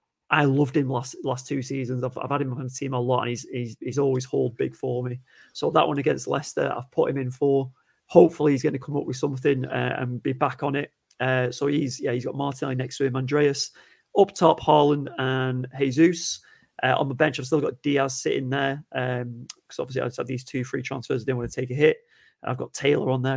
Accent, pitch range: British, 130-150 Hz